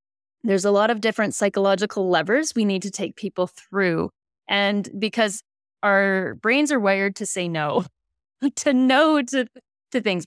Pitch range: 170-225 Hz